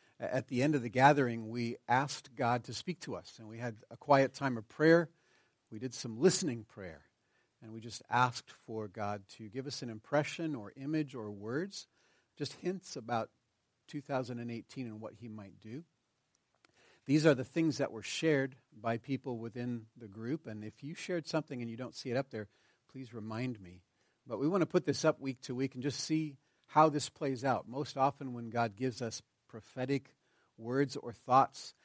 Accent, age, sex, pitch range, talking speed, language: American, 50-69, male, 115-140 Hz, 195 wpm, English